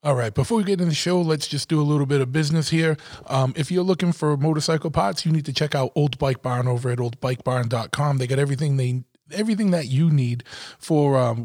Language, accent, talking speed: English, American, 235 wpm